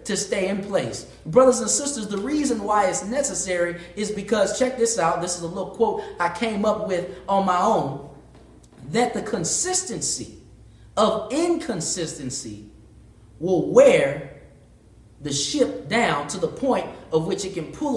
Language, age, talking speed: English, 30-49, 155 wpm